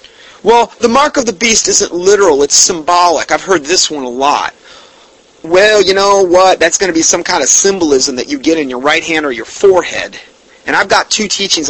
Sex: male